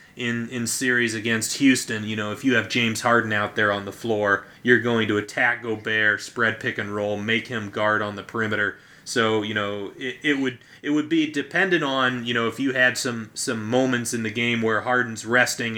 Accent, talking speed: American, 215 wpm